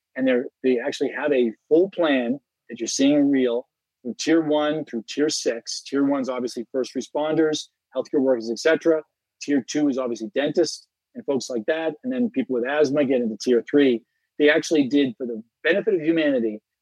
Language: English